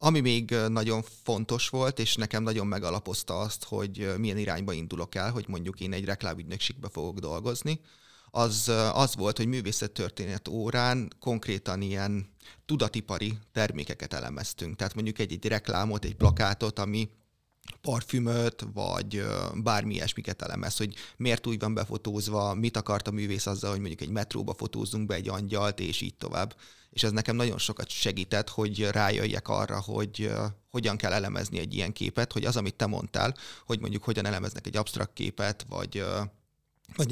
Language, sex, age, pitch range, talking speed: Hungarian, male, 30-49, 105-115 Hz, 155 wpm